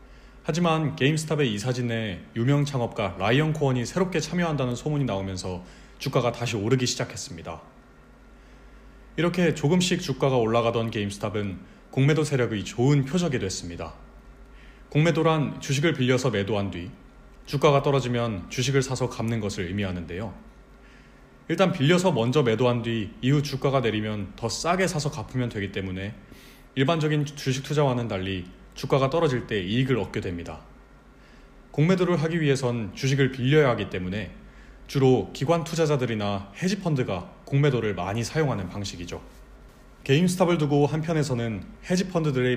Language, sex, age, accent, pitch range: Korean, male, 30-49, native, 110-150 Hz